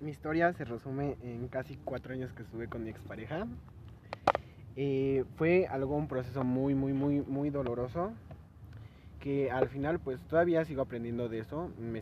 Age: 20-39